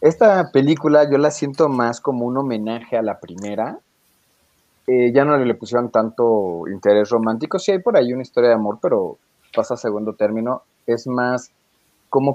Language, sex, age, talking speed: Spanish, male, 30-49, 175 wpm